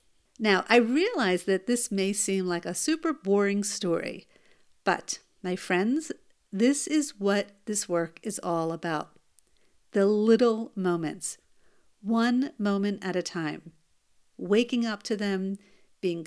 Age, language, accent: 50-69, English, American